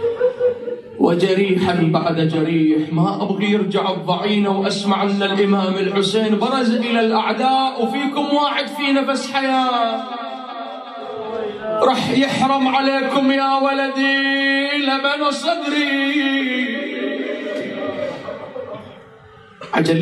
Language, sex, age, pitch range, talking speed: Arabic, male, 30-49, 205-275 Hz, 80 wpm